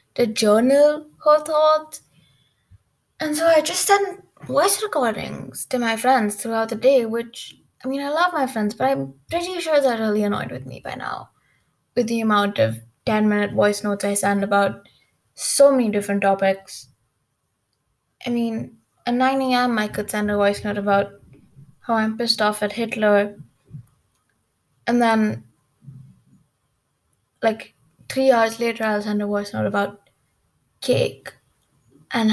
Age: 10-29